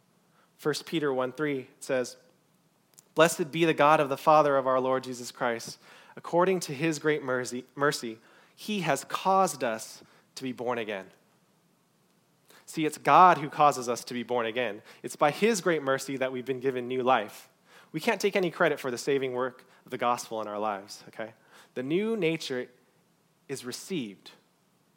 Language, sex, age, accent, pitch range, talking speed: English, male, 20-39, American, 125-175 Hz, 175 wpm